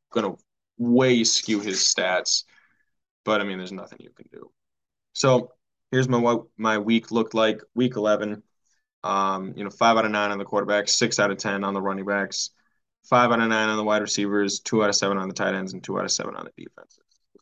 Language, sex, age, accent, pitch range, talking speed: English, male, 10-29, American, 100-120 Hz, 225 wpm